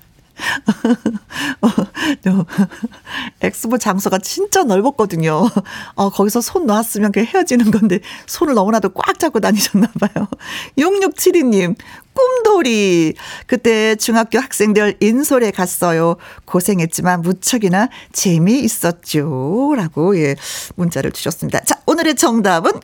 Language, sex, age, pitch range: Korean, female, 50-69, 200-305 Hz